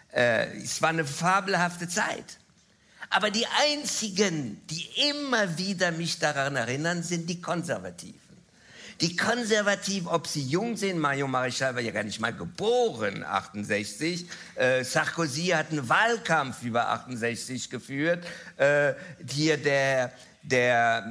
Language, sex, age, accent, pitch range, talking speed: German, male, 50-69, German, 140-190 Hz, 130 wpm